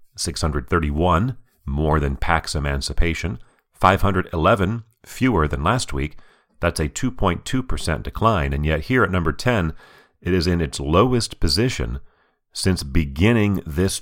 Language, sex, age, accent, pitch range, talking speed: English, male, 40-59, American, 75-105 Hz, 125 wpm